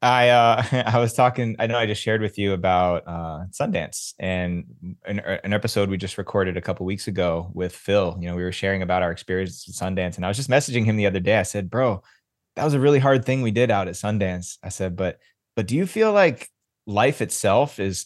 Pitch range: 90-120 Hz